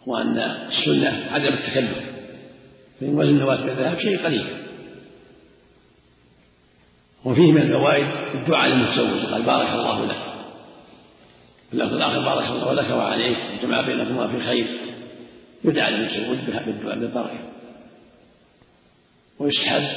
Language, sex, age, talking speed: Arabic, male, 50-69, 100 wpm